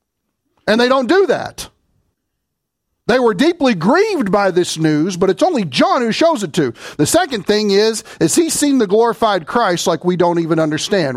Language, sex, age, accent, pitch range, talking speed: English, male, 50-69, American, 145-230 Hz, 190 wpm